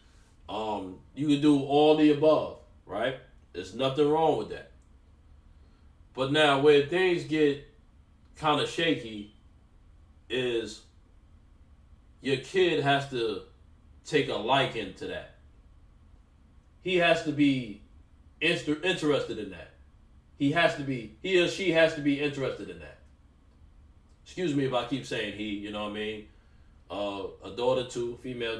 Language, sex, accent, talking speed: English, male, American, 145 wpm